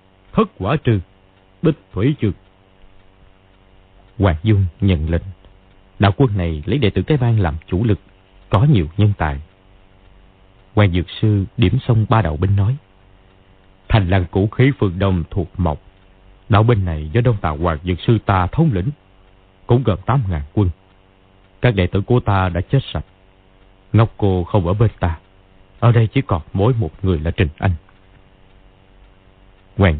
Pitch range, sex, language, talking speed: 95-110 Hz, male, Vietnamese, 165 wpm